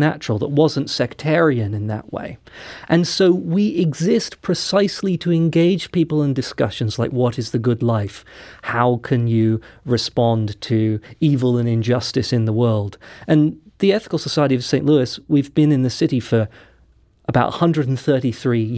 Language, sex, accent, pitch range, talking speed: English, male, British, 120-155 Hz, 155 wpm